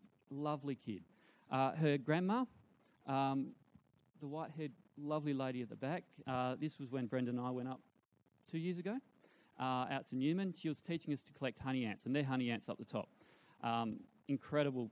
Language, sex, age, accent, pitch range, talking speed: English, male, 40-59, Australian, 120-160 Hz, 185 wpm